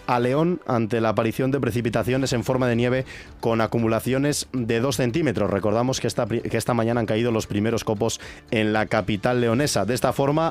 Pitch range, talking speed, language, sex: 110-130 Hz, 195 wpm, Spanish, male